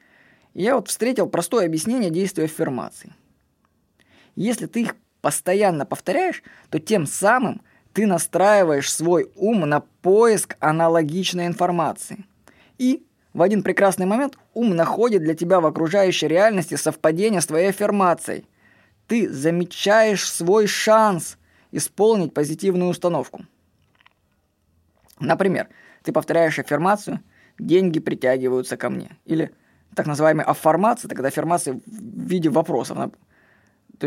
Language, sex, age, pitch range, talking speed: Russian, female, 20-39, 150-205 Hz, 110 wpm